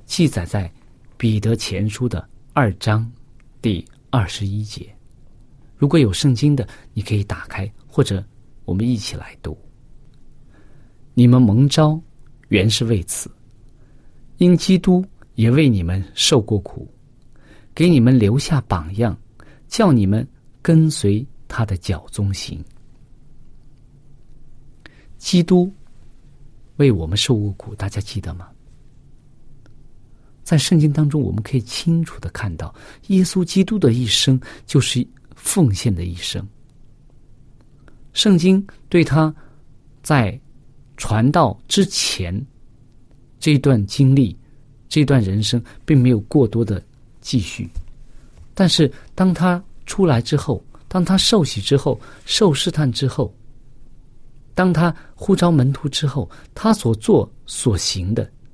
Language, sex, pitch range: Chinese, male, 110-145 Hz